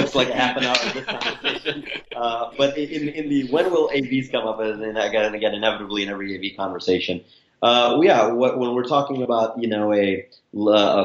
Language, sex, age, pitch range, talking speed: English, male, 30-49, 100-125 Hz, 195 wpm